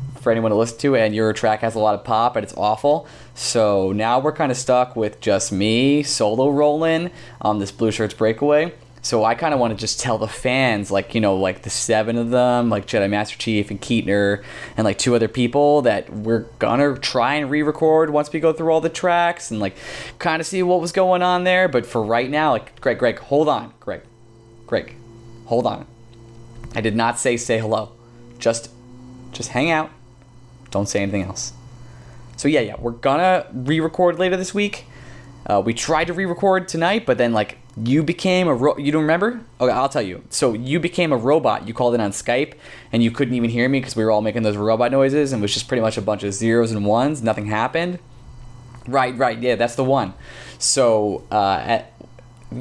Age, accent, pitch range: 20-39, American, 115-145 Hz